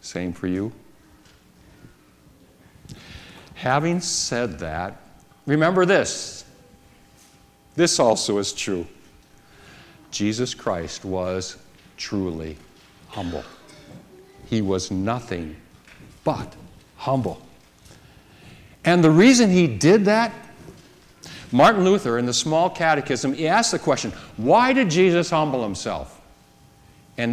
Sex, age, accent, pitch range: male, 60-79, American, 100-155 Hz